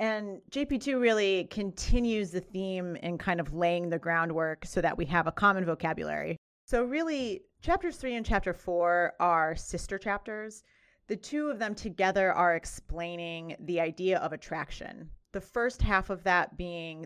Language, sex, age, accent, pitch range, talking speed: English, female, 30-49, American, 170-205 Hz, 160 wpm